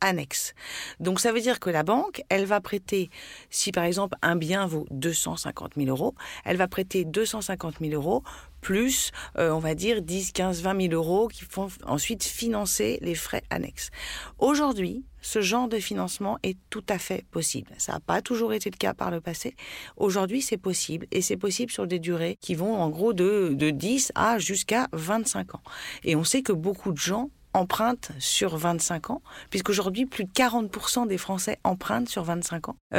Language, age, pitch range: French, 50-69, 175-225 Hz